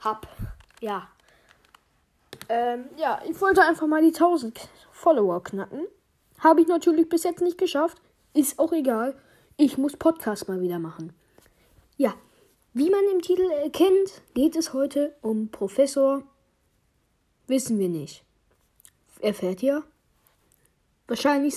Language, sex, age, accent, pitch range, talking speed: German, female, 10-29, German, 245-345 Hz, 130 wpm